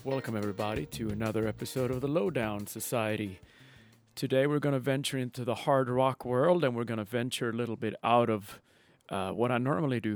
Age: 40-59